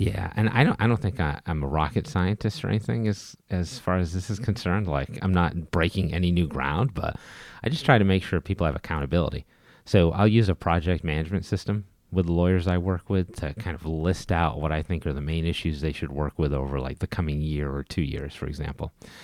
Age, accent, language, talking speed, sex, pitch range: 30-49, American, English, 235 wpm, male, 80-100 Hz